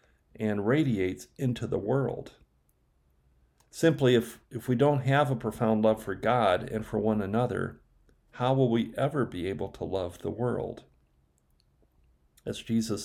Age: 50-69